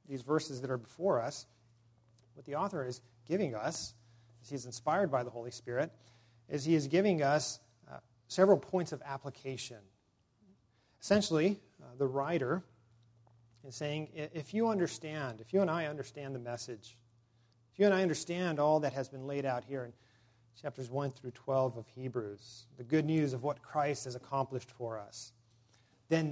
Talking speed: 170 wpm